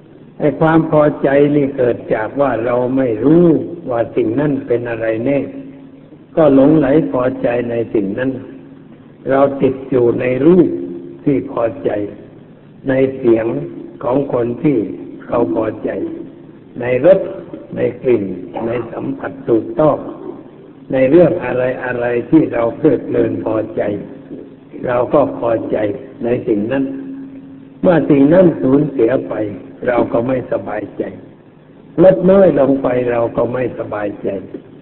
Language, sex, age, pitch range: Thai, male, 60-79, 120-155 Hz